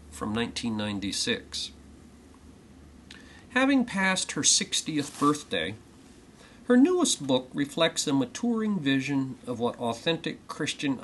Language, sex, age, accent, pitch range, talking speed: English, male, 50-69, American, 120-190 Hz, 100 wpm